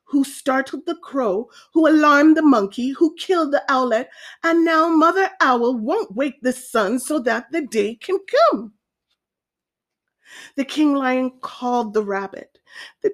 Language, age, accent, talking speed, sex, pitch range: English, 30-49, American, 150 wpm, female, 225-330 Hz